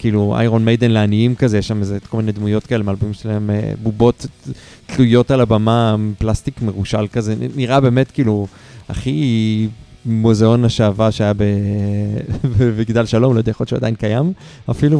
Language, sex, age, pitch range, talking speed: Hebrew, male, 30-49, 105-130 Hz, 150 wpm